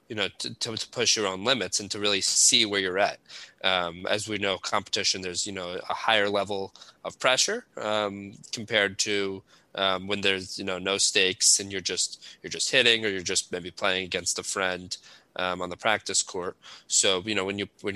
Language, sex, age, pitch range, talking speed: English, male, 20-39, 95-110 Hz, 210 wpm